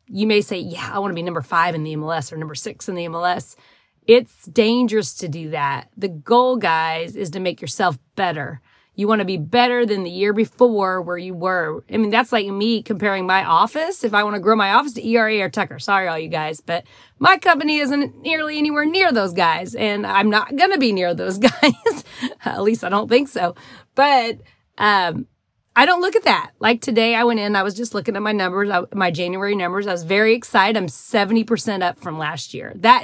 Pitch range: 180-245 Hz